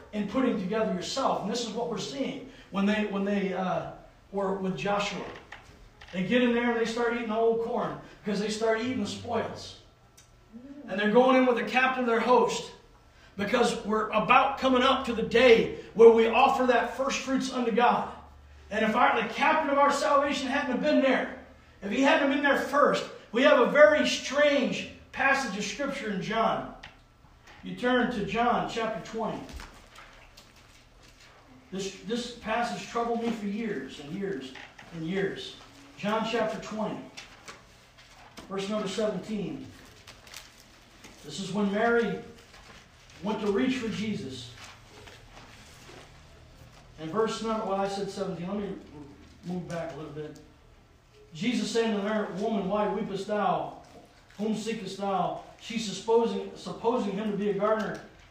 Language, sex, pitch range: English, male, 200-240 Hz